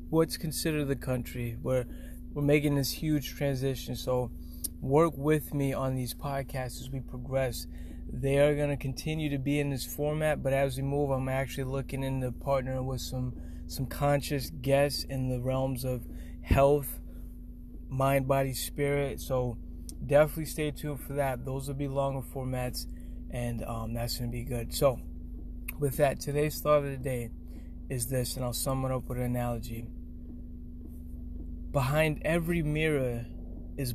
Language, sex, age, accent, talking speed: English, male, 20-39, American, 165 wpm